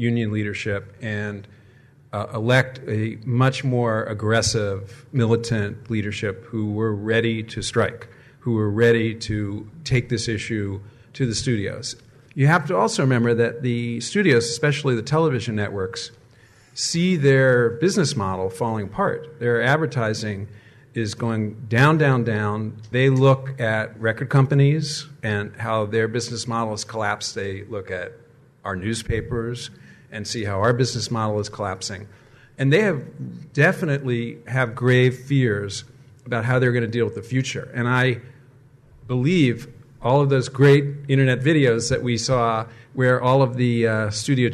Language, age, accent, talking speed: English, 40-59, American, 150 wpm